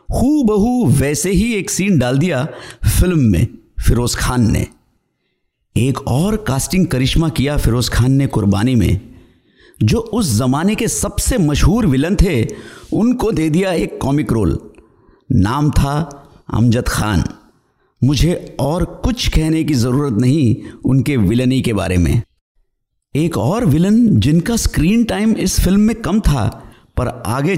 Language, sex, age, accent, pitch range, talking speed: Hindi, male, 50-69, native, 115-180 Hz, 140 wpm